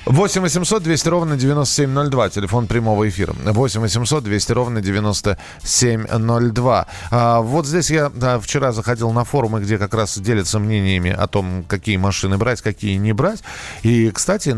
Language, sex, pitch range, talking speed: Russian, male, 100-135 Hz, 150 wpm